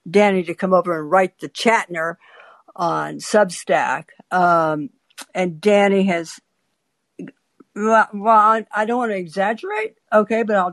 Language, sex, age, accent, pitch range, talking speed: English, female, 60-79, American, 190-250 Hz, 130 wpm